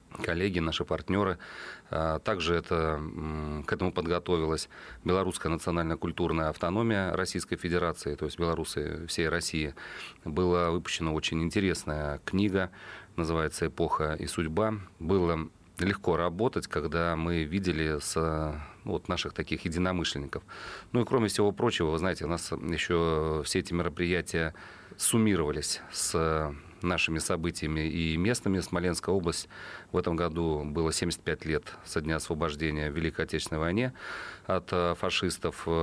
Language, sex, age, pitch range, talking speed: Russian, male, 30-49, 80-90 Hz, 125 wpm